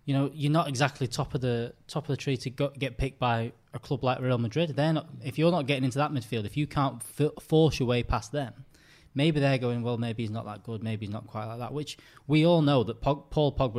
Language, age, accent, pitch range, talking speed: English, 20-39, British, 110-140 Hz, 285 wpm